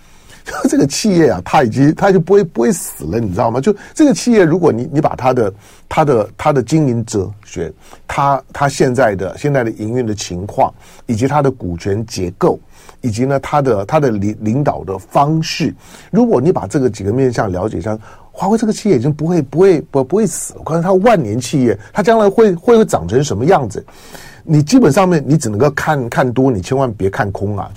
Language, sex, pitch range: Chinese, male, 120-190 Hz